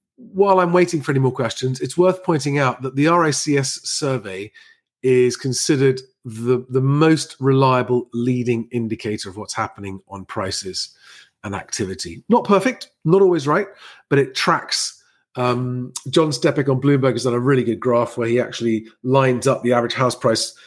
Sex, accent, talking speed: male, British, 170 wpm